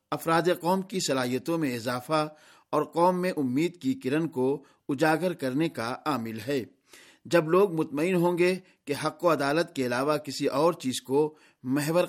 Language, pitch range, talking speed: Urdu, 140-175 Hz, 170 wpm